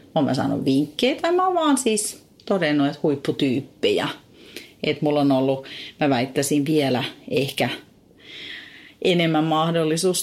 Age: 40-59